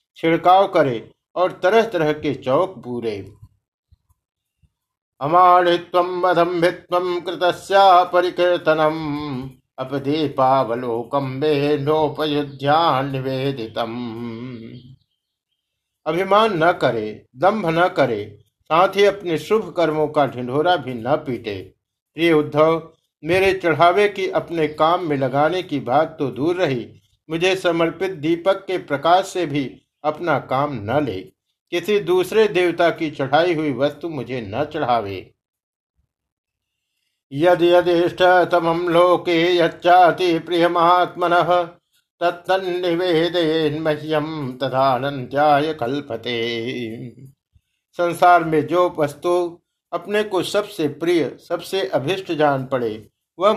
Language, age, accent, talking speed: Hindi, 60-79, native, 85 wpm